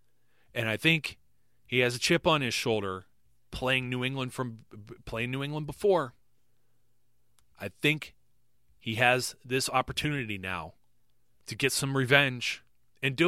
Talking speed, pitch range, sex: 140 wpm, 120-160 Hz, male